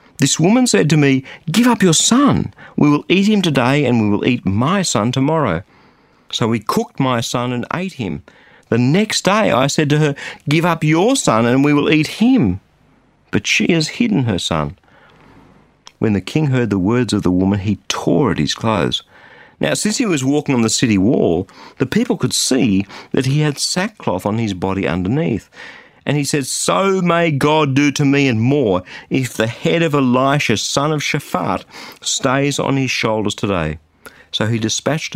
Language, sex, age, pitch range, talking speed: English, male, 50-69, 105-150 Hz, 195 wpm